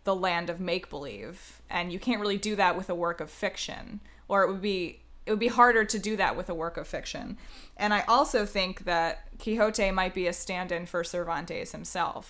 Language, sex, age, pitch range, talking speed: English, female, 20-39, 165-205 Hz, 220 wpm